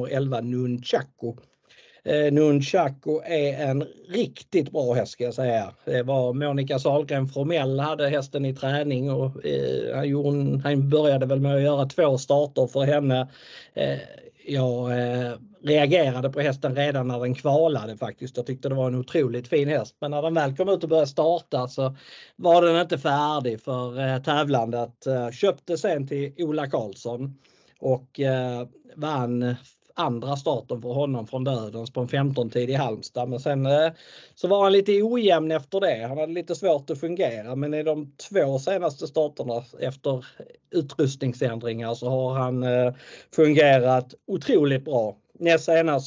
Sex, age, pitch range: male, 50-69, 125-150 Hz